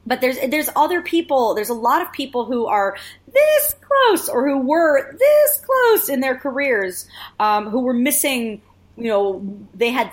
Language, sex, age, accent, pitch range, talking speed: English, female, 30-49, American, 175-245 Hz, 180 wpm